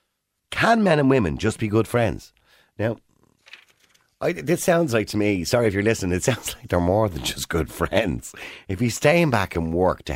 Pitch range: 90-140 Hz